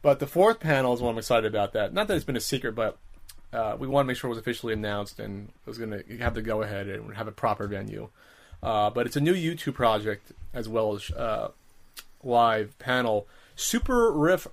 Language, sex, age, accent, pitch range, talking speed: English, male, 30-49, American, 105-135 Hz, 230 wpm